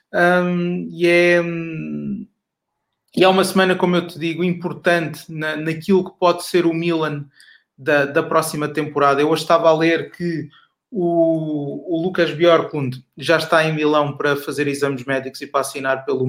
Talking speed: 155 wpm